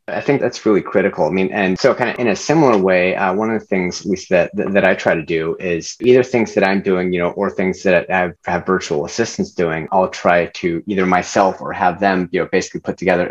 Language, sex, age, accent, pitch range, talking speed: English, male, 30-49, American, 90-110 Hz, 250 wpm